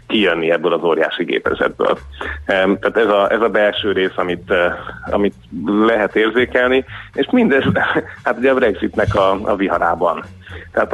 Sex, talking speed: male, 145 wpm